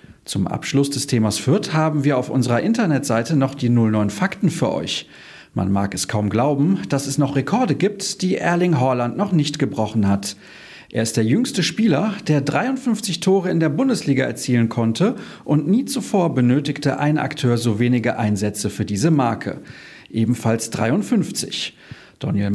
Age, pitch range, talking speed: 40-59, 115-165 Hz, 160 wpm